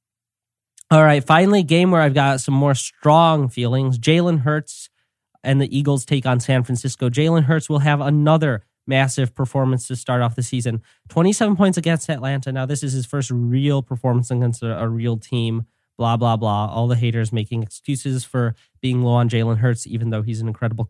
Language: English